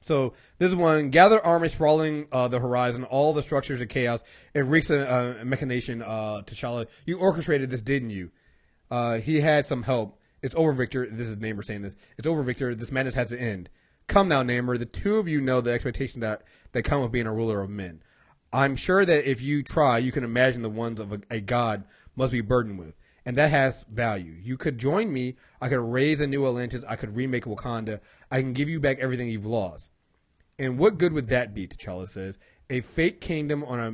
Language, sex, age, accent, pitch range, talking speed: English, male, 30-49, American, 115-140 Hz, 220 wpm